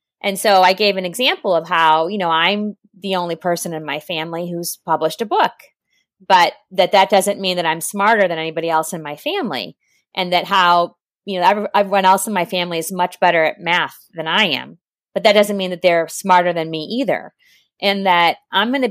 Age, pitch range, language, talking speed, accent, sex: 30-49, 160-200 Hz, English, 215 wpm, American, female